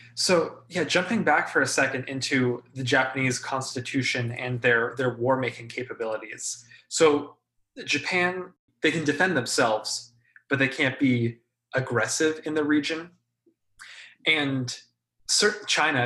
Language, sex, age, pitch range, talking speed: English, male, 20-39, 120-150 Hz, 120 wpm